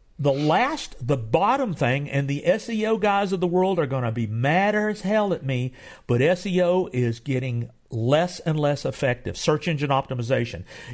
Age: 50-69